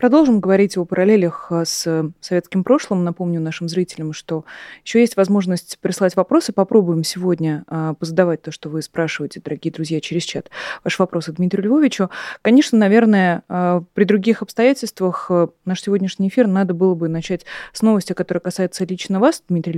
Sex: female